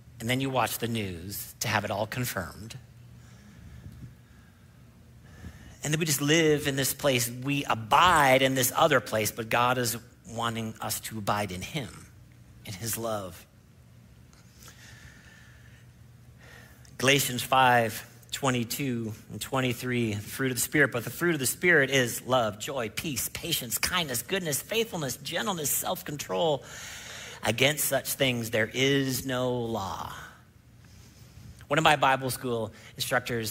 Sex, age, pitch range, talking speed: male, 50-69, 115-145 Hz, 135 wpm